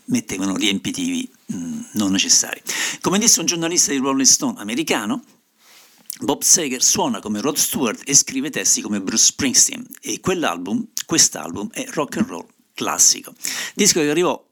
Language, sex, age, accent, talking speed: Italian, male, 60-79, native, 150 wpm